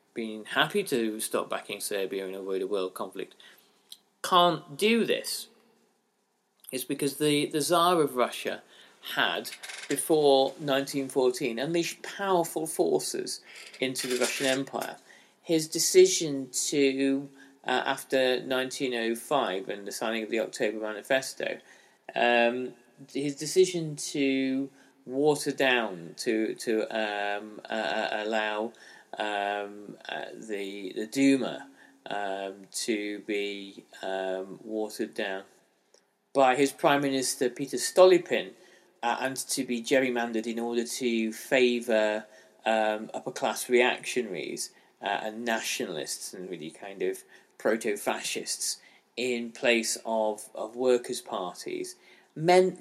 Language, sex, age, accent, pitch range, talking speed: English, male, 40-59, British, 110-150 Hz, 115 wpm